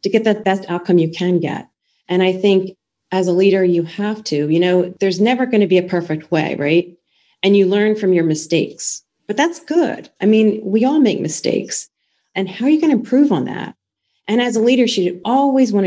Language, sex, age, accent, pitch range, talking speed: English, female, 40-59, American, 170-210 Hz, 225 wpm